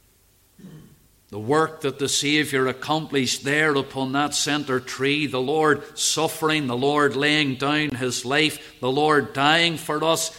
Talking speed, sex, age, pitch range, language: 145 wpm, male, 50-69, 100-140 Hz, English